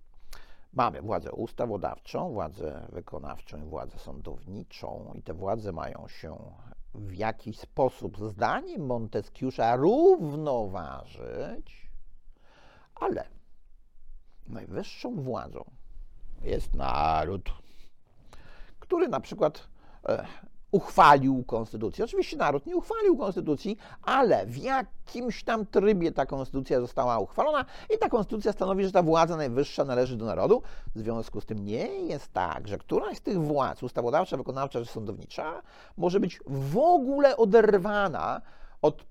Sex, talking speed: male, 115 wpm